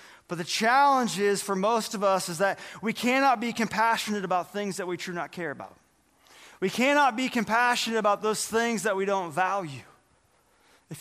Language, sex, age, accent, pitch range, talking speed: English, male, 30-49, American, 195-275 Hz, 185 wpm